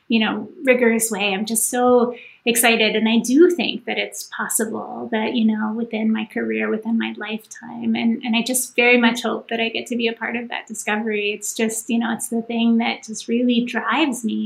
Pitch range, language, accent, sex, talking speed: 220-240 Hz, English, American, female, 220 wpm